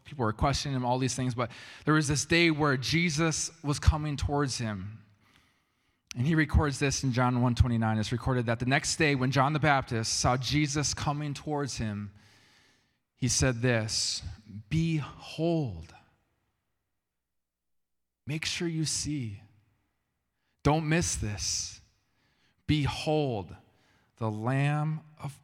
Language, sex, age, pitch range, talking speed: English, male, 20-39, 95-145 Hz, 130 wpm